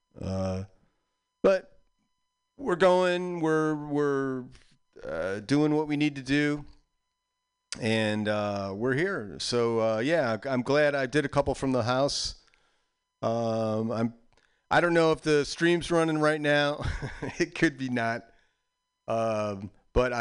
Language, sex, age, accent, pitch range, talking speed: English, male, 40-59, American, 105-160 Hz, 135 wpm